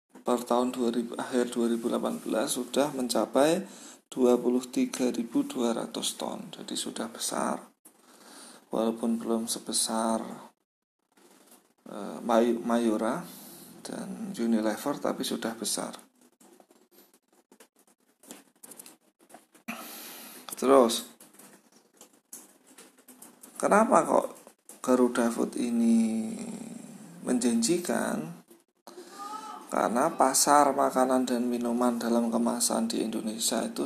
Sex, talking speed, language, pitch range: male, 65 wpm, Indonesian, 115-165 Hz